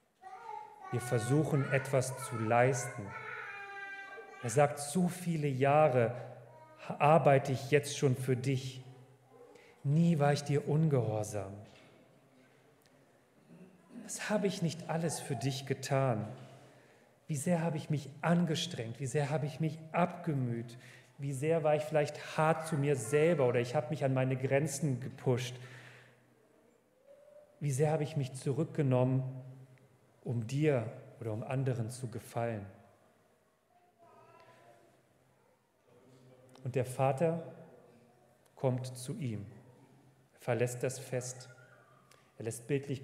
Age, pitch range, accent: 40-59, 125-150 Hz, German